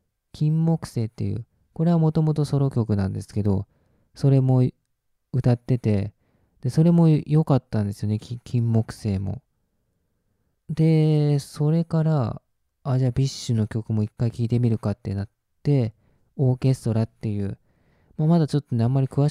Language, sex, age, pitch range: Japanese, male, 20-39, 105-135 Hz